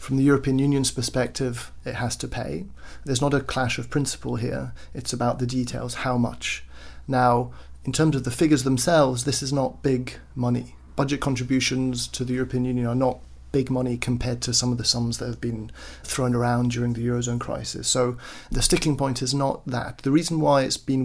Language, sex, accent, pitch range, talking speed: English, male, British, 125-140 Hz, 200 wpm